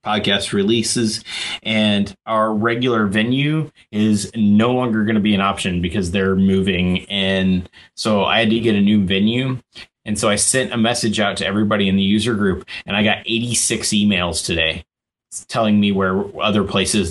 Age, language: 20-39, English